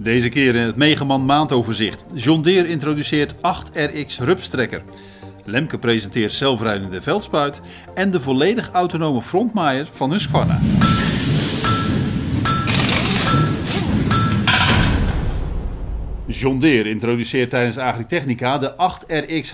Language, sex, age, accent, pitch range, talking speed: Dutch, male, 50-69, Dutch, 115-170 Hz, 90 wpm